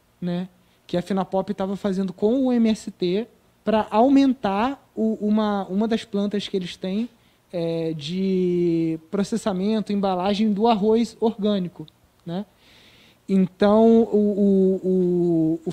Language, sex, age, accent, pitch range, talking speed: Portuguese, male, 20-39, Brazilian, 180-220 Hz, 120 wpm